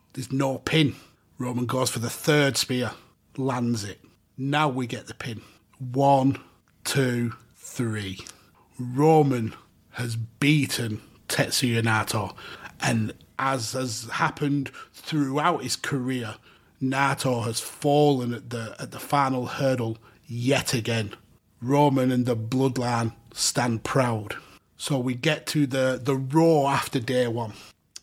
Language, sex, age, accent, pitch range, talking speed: English, male, 30-49, British, 120-140 Hz, 120 wpm